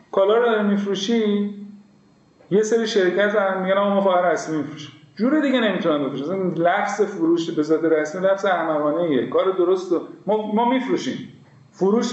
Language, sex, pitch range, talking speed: Persian, male, 155-200 Hz, 150 wpm